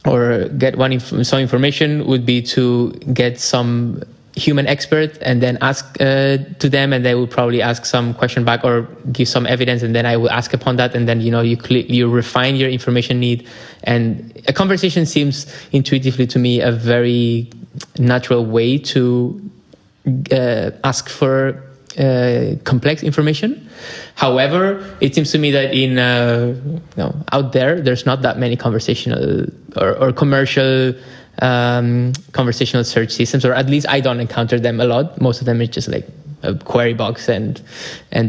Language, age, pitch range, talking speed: English, 20-39, 120-140 Hz, 170 wpm